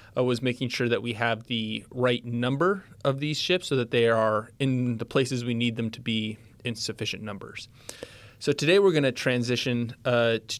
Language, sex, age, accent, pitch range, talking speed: English, male, 20-39, American, 115-130 Hz, 200 wpm